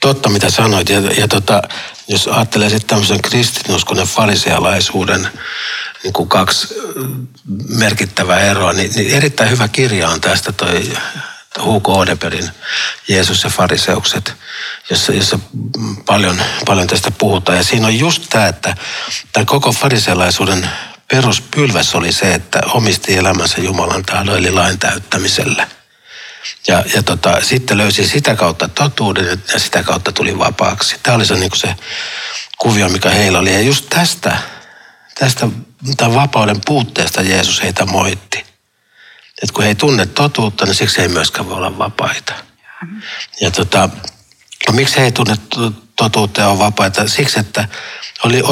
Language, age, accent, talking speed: Finnish, 60-79, native, 140 wpm